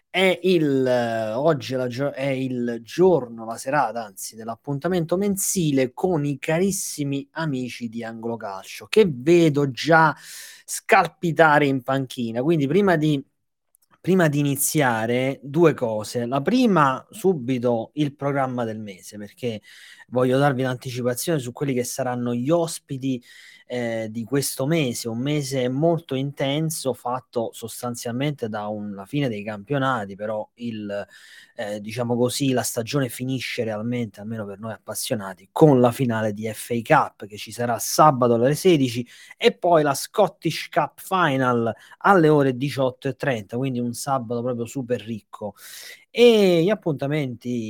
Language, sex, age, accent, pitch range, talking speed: Italian, male, 20-39, native, 120-150 Hz, 140 wpm